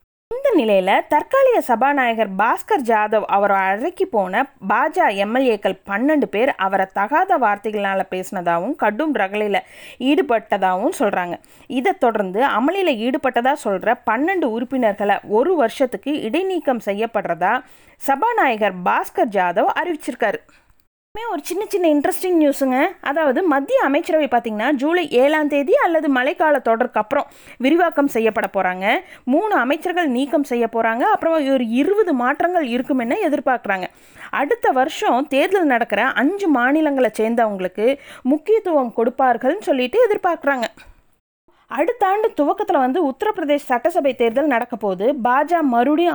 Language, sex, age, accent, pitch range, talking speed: Tamil, female, 20-39, native, 225-320 Hz, 115 wpm